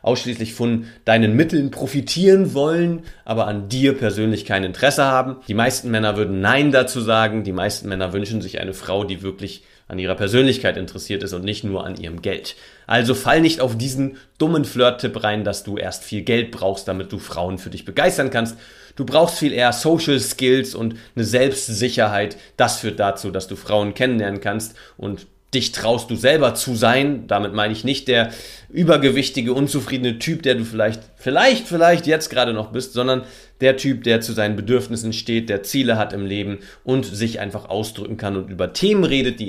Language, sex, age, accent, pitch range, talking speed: German, male, 30-49, German, 100-135 Hz, 190 wpm